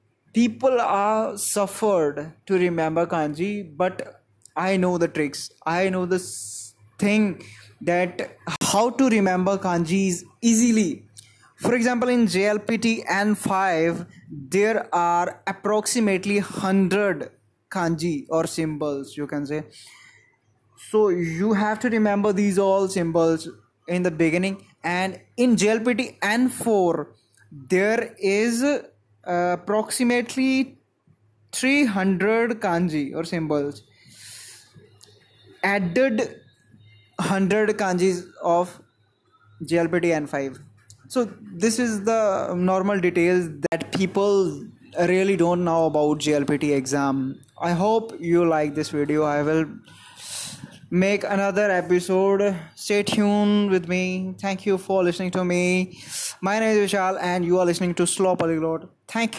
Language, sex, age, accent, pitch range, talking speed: English, male, 20-39, Indian, 155-205 Hz, 115 wpm